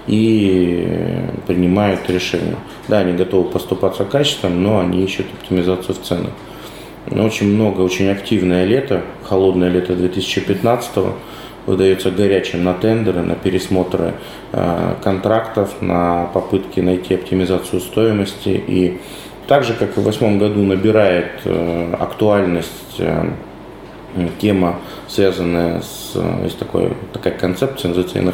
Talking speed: 120 wpm